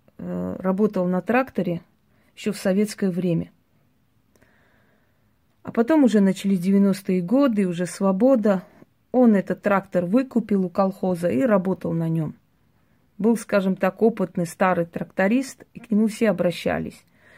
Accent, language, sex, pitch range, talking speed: native, Russian, female, 180-220 Hz, 125 wpm